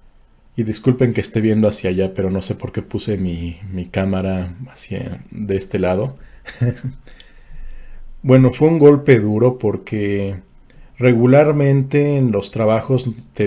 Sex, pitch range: male, 100-125 Hz